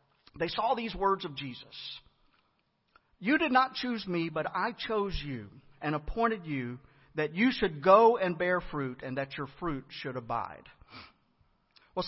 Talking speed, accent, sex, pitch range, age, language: 160 wpm, American, male, 140-220 Hz, 50-69, English